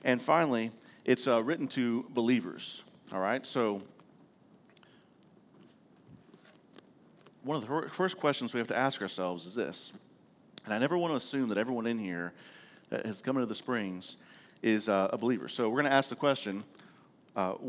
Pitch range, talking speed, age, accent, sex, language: 110-140 Hz, 170 wpm, 40-59, American, male, English